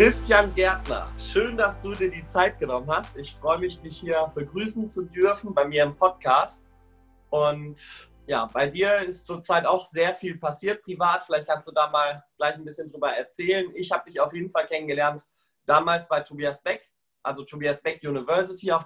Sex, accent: male, German